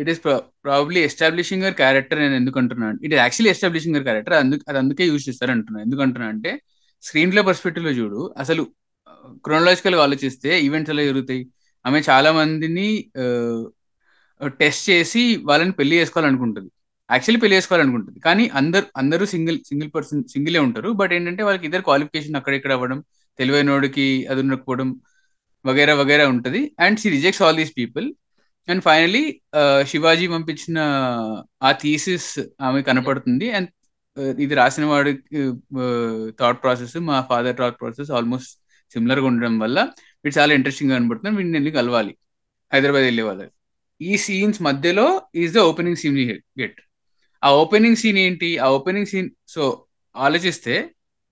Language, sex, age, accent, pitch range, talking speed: Telugu, male, 20-39, native, 130-180 Hz, 155 wpm